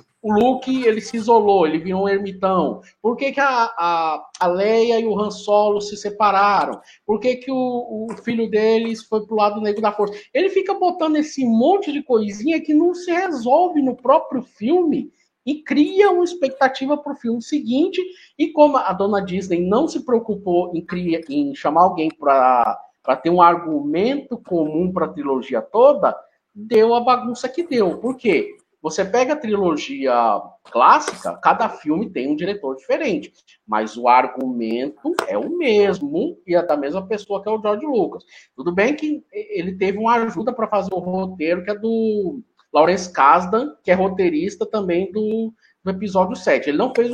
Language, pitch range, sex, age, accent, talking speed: Portuguese, 190-280 Hz, male, 50-69, Brazilian, 180 wpm